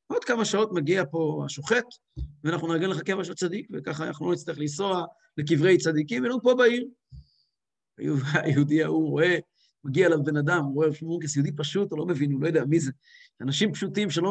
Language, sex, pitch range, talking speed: English, male, 170-270 Hz, 170 wpm